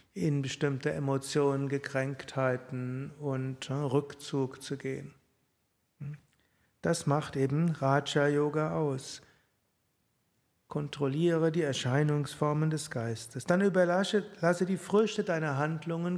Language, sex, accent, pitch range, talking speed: German, male, German, 130-155 Hz, 90 wpm